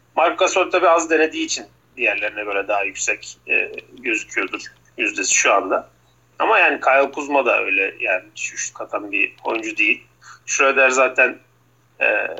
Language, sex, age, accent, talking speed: Turkish, male, 40-59, native, 140 wpm